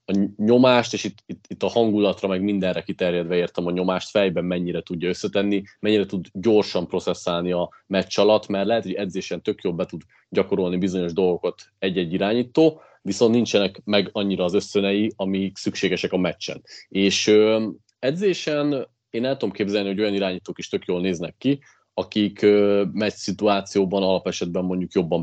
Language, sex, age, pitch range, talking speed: Hungarian, male, 30-49, 90-105 Hz, 160 wpm